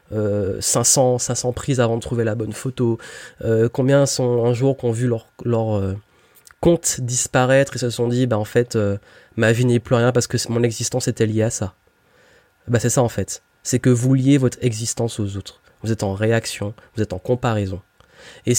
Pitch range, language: 115-135 Hz, French